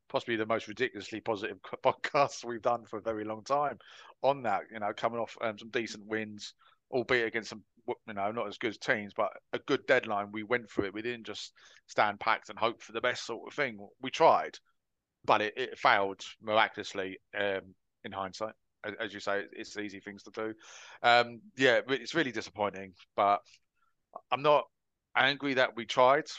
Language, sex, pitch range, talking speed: English, male, 100-120 Hz, 195 wpm